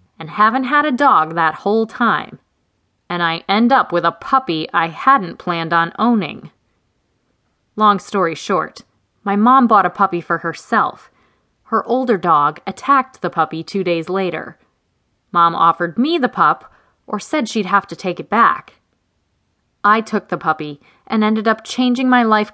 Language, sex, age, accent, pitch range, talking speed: English, female, 20-39, American, 170-245 Hz, 165 wpm